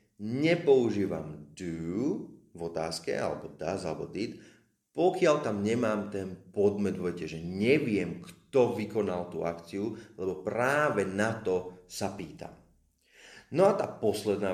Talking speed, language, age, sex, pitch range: 120 wpm, Slovak, 30-49, male, 90-150 Hz